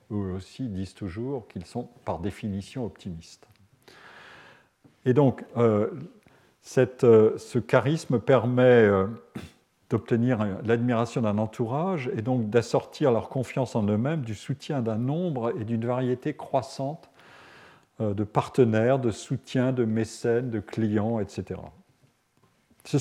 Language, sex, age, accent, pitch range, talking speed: French, male, 50-69, French, 110-135 Hz, 130 wpm